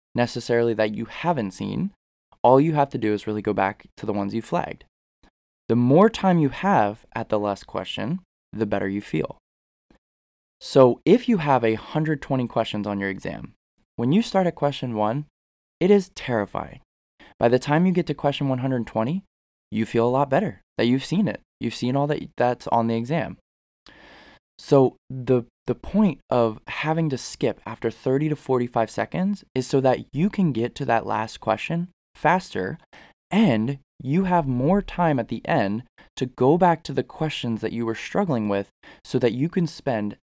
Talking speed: 185 wpm